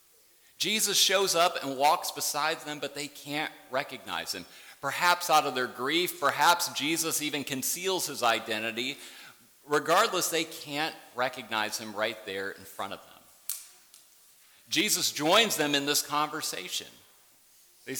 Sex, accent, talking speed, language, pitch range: male, American, 135 wpm, English, 125-175 Hz